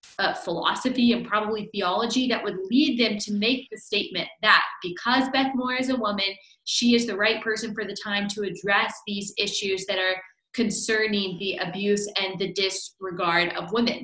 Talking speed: 180 wpm